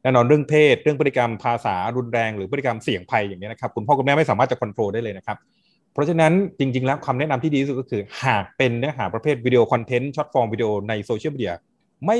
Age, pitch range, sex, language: 20-39, 115-155 Hz, male, Thai